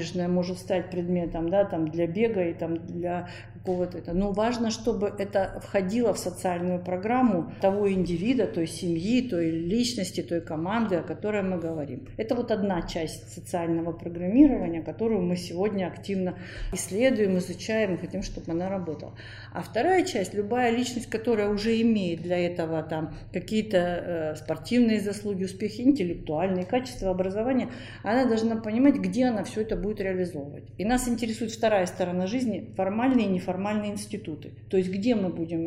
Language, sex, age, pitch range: Russian, female, 50-69, 175-225 Hz